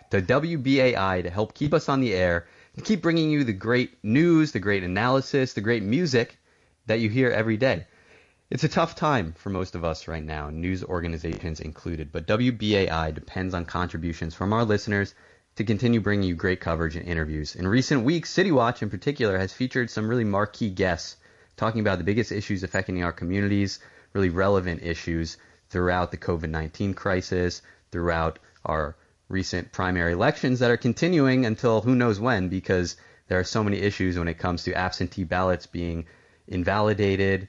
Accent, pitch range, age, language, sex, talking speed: American, 90-110 Hz, 30-49, English, male, 175 wpm